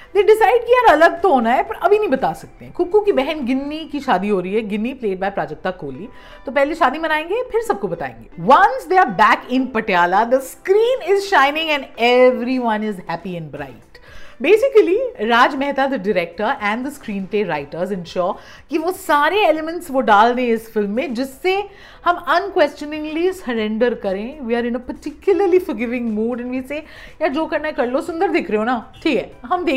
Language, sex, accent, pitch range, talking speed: English, female, Indian, 220-340 Hz, 185 wpm